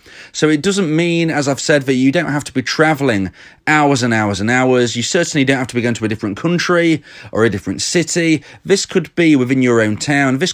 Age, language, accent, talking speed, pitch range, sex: 30-49, English, British, 240 wpm, 115-160 Hz, male